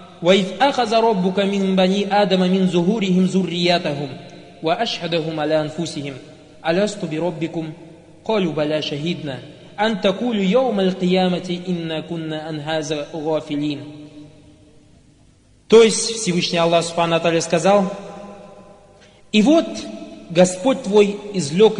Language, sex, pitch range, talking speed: Russian, male, 160-200 Hz, 30 wpm